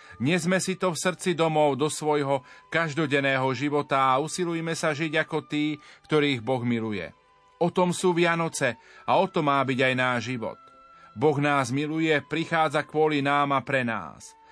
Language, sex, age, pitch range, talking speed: Slovak, male, 40-59, 140-160 Hz, 170 wpm